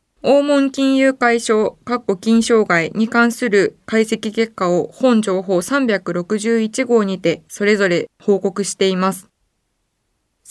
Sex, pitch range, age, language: female, 190-255 Hz, 20-39, Japanese